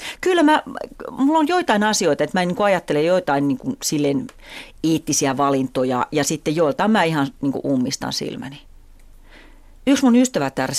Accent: native